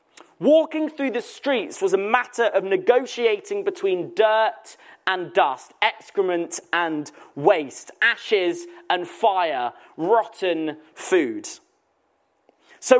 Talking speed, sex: 100 wpm, male